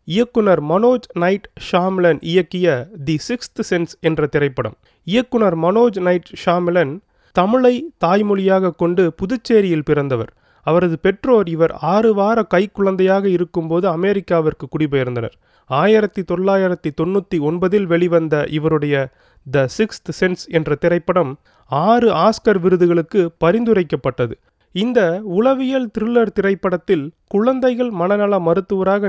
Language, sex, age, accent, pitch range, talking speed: Tamil, male, 30-49, native, 165-215 Hz, 100 wpm